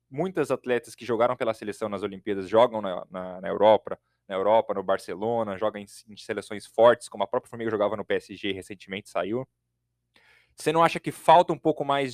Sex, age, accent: male, 20-39, Brazilian